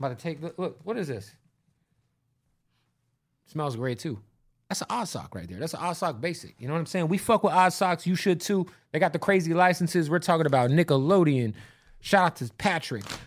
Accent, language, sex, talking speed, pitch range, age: American, English, male, 220 wpm, 120-165 Hz, 30-49